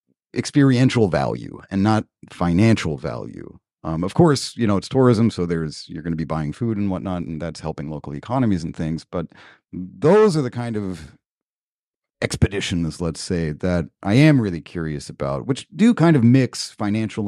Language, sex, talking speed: English, male, 175 wpm